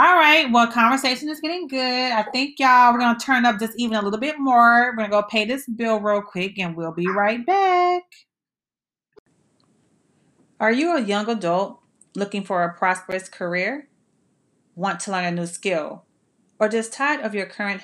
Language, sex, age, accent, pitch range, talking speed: English, female, 30-49, American, 185-255 Hz, 185 wpm